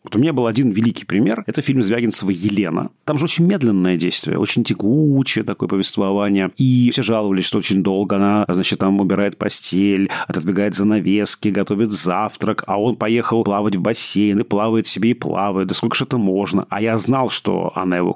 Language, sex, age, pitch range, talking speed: Russian, male, 30-49, 100-125 Hz, 190 wpm